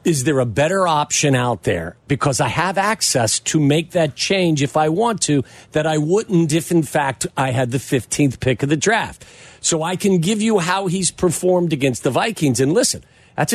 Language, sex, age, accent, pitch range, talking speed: English, male, 50-69, American, 130-185 Hz, 210 wpm